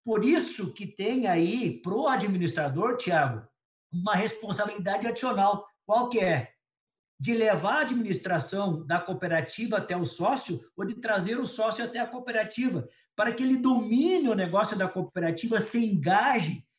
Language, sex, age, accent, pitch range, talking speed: Portuguese, male, 50-69, Brazilian, 180-240 Hz, 150 wpm